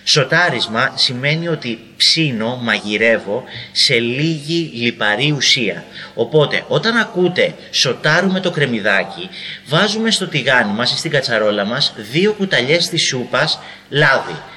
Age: 30-49